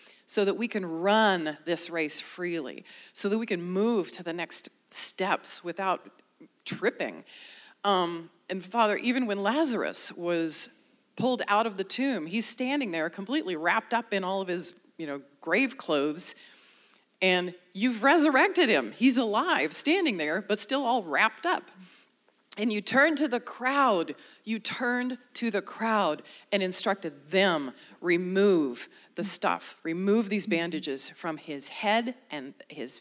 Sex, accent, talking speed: female, American, 145 wpm